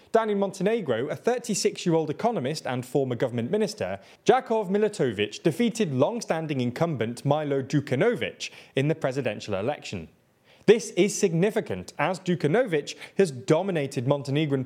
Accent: British